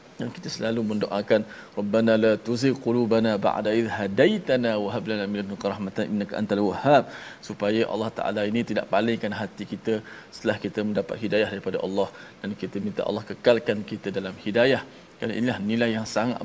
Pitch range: 100-120 Hz